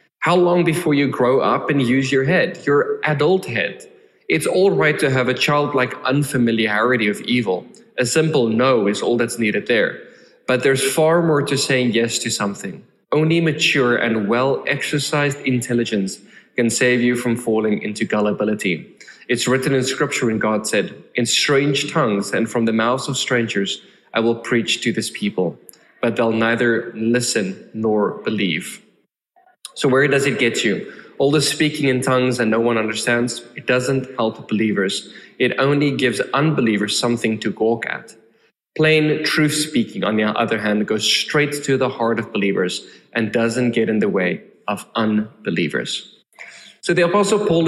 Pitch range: 115-145 Hz